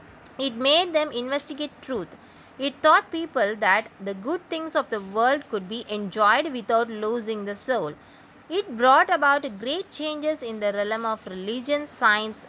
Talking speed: 160 wpm